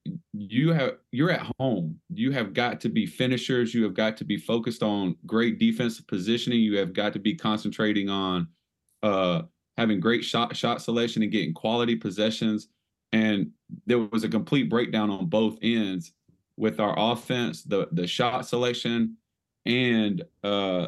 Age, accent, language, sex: 30-49, American, English, male